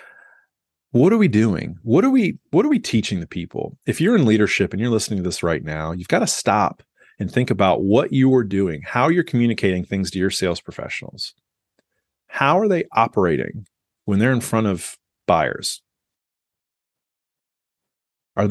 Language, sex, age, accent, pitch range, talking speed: English, male, 30-49, American, 95-125 Hz, 175 wpm